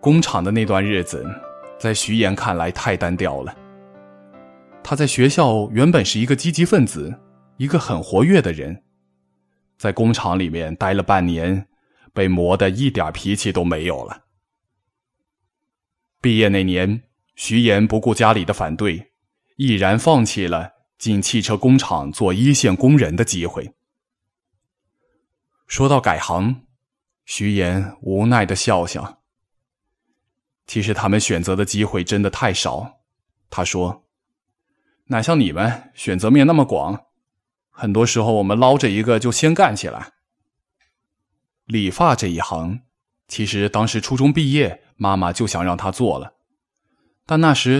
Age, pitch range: 20-39, 95-120 Hz